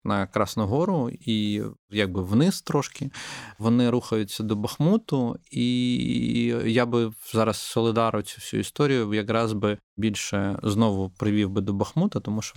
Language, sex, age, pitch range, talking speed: Ukrainian, male, 20-39, 100-120 Hz, 135 wpm